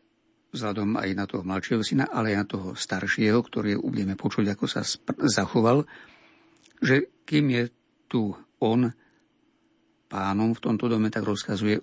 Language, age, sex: Slovak, 60-79, male